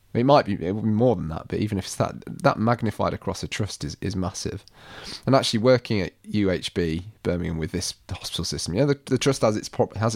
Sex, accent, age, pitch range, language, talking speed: male, British, 30-49, 90-115 Hz, English, 240 wpm